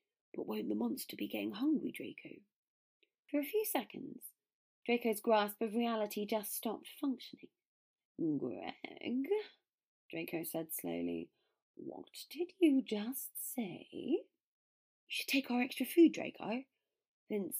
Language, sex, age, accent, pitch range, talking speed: English, female, 30-49, British, 200-310 Hz, 125 wpm